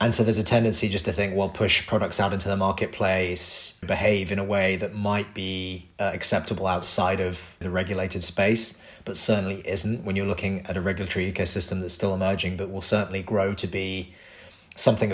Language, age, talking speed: English, 30-49, 195 wpm